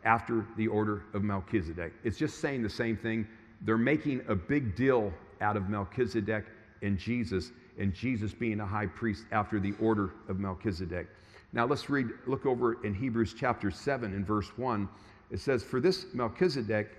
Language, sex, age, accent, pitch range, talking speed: English, male, 50-69, American, 100-120 Hz, 175 wpm